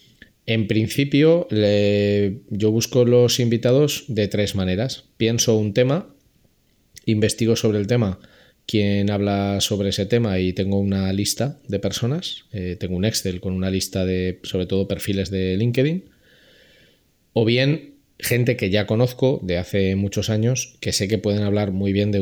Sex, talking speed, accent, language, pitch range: male, 155 wpm, Spanish, Spanish, 95-120 Hz